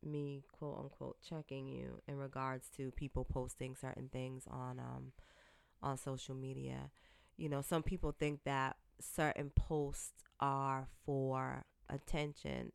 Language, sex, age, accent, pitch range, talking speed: English, female, 20-39, American, 95-150 Hz, 130 wpm